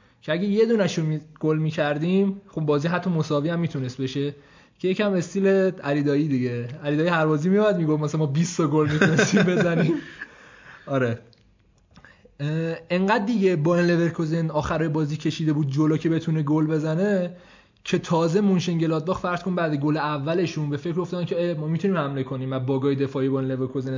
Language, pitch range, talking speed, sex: Persian, 145-180 Hz, 170 wpm, male